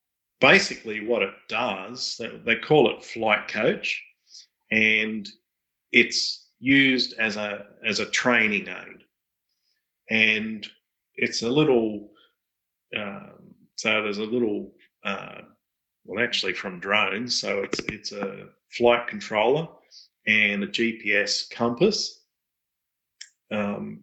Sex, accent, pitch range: male, Australian, 105-125 Hz